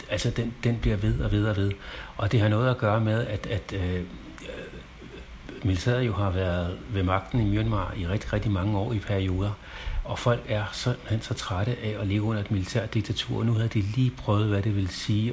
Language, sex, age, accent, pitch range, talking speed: Danish, male, 60-79, native, 95-110 Hz, 225 wpm